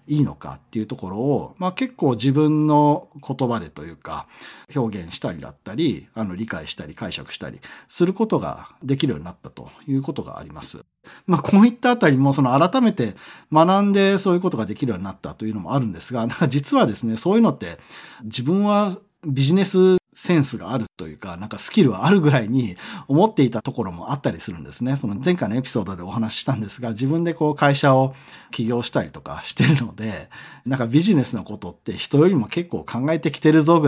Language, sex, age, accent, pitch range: Japanese, male, 40-59, native, 115-165 Hz